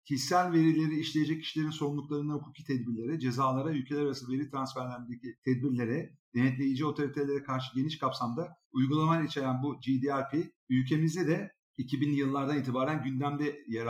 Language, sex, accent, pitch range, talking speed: Turkish, male, native, 130-155 Hz, 125 wpm